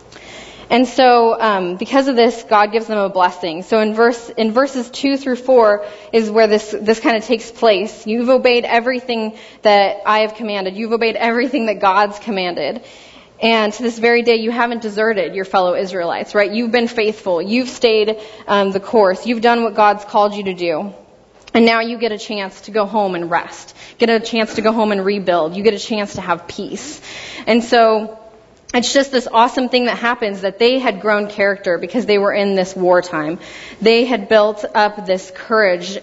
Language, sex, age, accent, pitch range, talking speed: English, female, 20-39, American, 200-235 Hz, 200 wpm